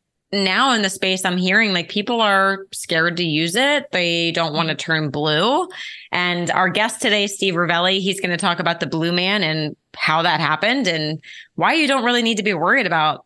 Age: 20-39